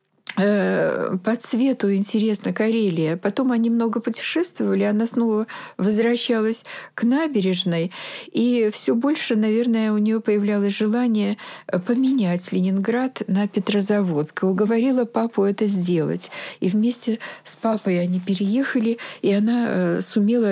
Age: 50-69